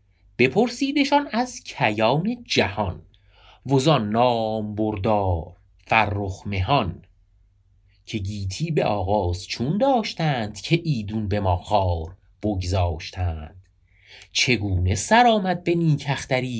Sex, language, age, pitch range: male, Persian, 30-49, 95-125 Hz